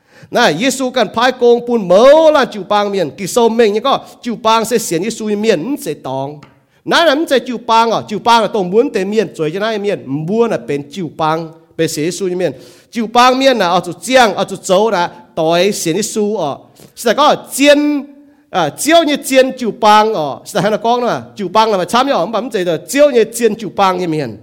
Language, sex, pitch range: English, male, 175-245 Hz